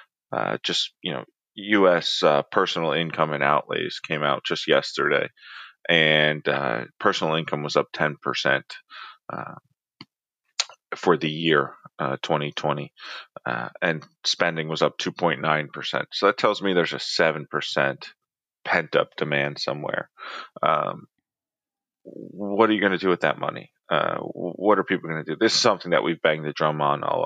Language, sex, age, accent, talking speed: English, male, 30-49, American, 155 wpm